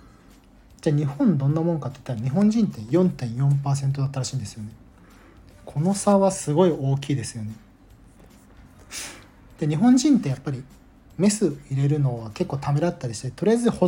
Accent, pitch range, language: native, 130-185 Hz, Japanese